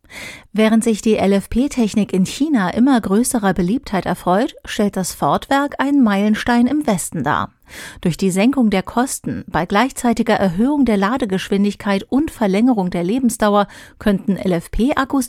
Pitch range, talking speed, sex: 190-240 Hz, 135 wpm, female